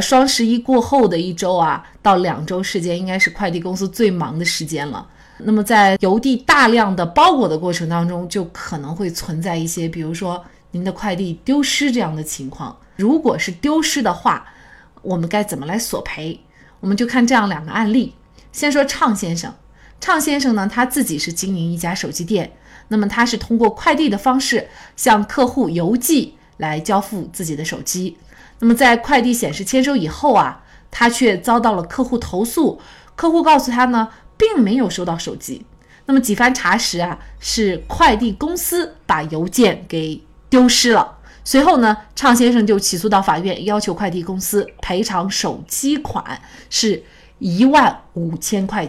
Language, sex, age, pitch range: Chinese, female, 30-49, 180-245 Hz